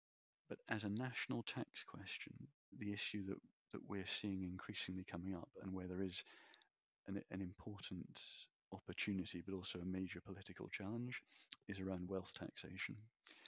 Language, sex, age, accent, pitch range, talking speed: English, male, 30-49, British, 95-105 Hz, 145 wpm